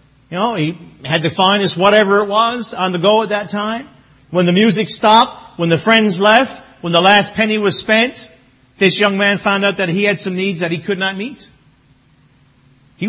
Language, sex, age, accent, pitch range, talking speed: English, male, 50-69, American, 140-200 Hz, 205 wpm